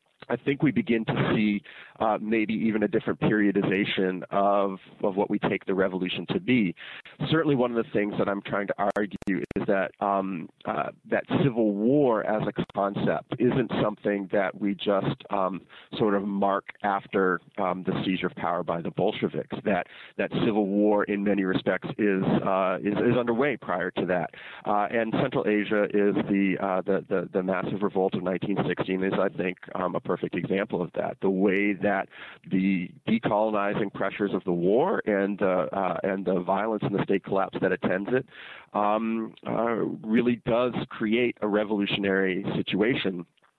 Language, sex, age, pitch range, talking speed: English, male, 40-59, 95-110 Hz, 175 wpm